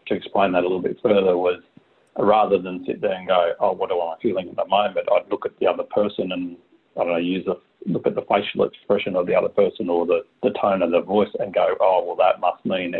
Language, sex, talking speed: English, male, 265 wpm